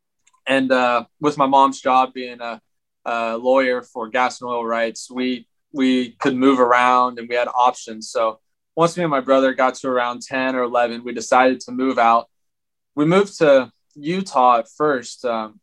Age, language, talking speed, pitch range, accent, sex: 20-39, English, 185 wpm, 120-135 Hz, American, male